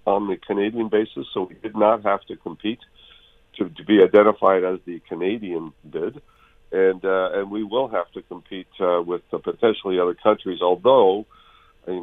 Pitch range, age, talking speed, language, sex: 90-120 Hz, 50-69, 175 wpm, English, male